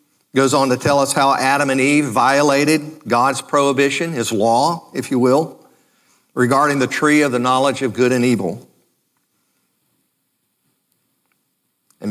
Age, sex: 50-69, male